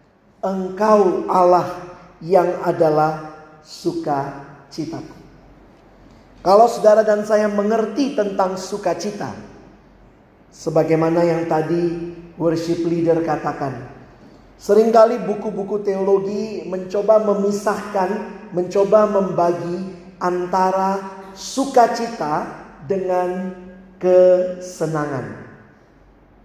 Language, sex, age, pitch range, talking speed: Indonesian, male, 40-59, 170-215 Hz, 65 wpm